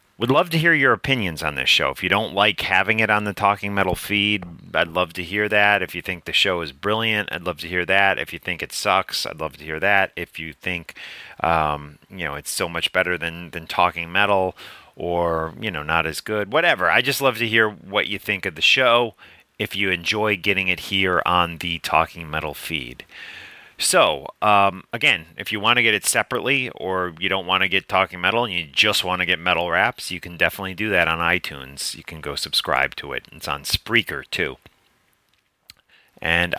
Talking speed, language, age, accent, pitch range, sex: 220 wpm, English, 30-49, American, 80-105 Hz, male